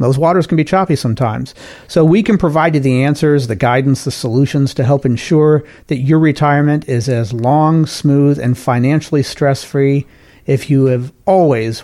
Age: 50-69